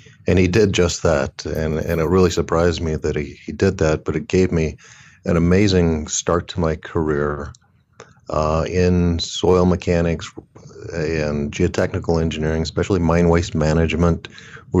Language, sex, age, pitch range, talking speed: English, male, 50-69, 75-90 Hz, 155 wpm